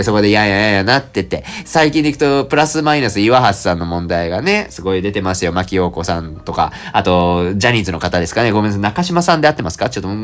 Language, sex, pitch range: Japanese, male, 95-135 Hz